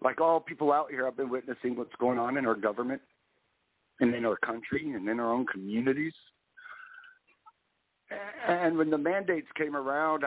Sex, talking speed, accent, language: male, 170 wpm, American, English